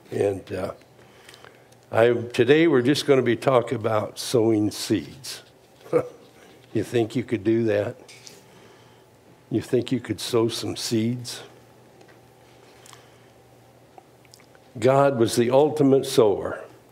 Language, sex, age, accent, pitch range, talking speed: English, male, 60-79, American, 115-145 Hz, 110 wpm